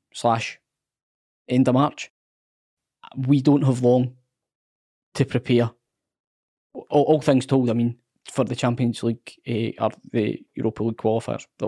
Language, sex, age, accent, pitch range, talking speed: English, male, 10-29, British, 120-140 Hz, 140 wpm